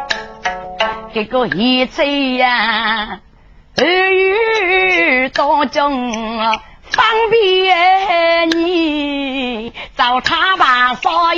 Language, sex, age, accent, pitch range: Chinese, female, 30-49, American, 250-335 Hz